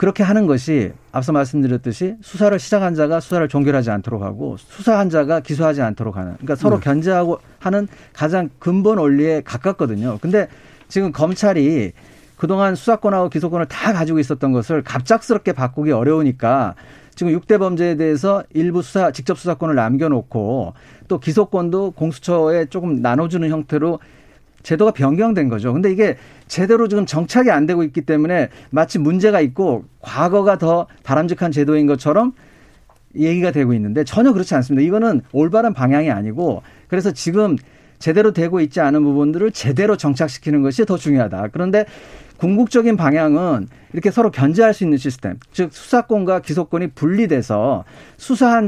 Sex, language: male, Korean